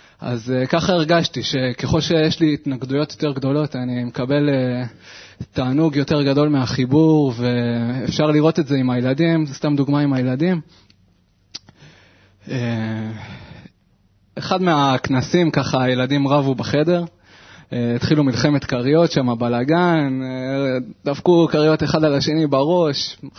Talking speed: 125 wpm